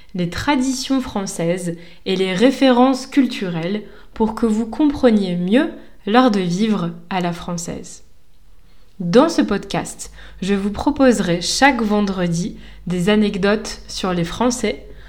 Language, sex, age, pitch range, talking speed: French, female, 20-39, 195-255 Hz, 125 wpm